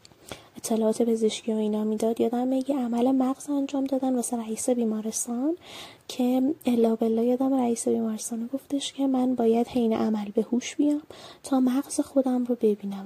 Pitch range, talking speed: 225-265 Hz, 155 wpm